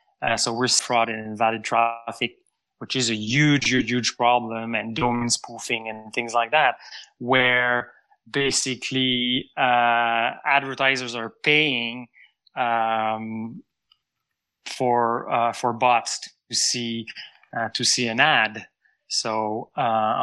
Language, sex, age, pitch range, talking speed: English, male, 20-39, 115-135 Hz, 120 wpm